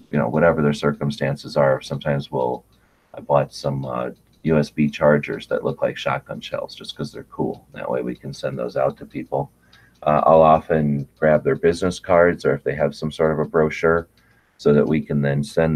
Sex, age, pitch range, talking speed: male, 30-49, 70-80 Hz, 200 wpm